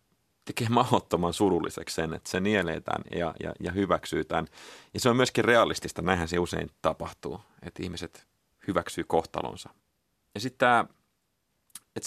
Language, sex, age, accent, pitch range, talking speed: Finnish, male, 30-49, native, 85-100 Hz, 145 wpm